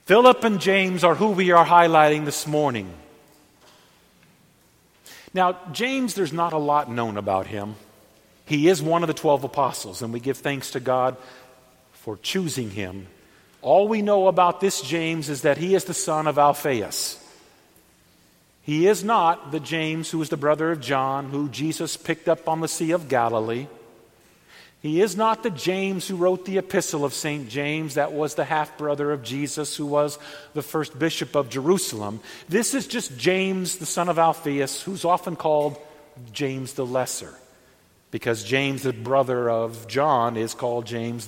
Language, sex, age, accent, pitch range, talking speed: English, male, 50-69, American, 130-180 Hz, 170 wpm